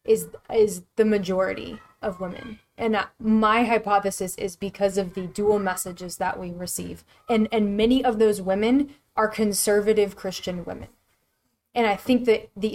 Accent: American